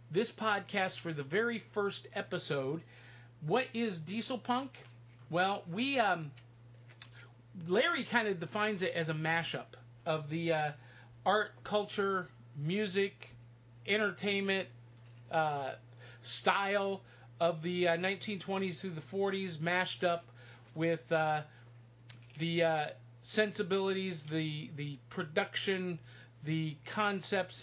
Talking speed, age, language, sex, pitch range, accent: 110 wpm, 40-59, English, male, 120-195 Hz, American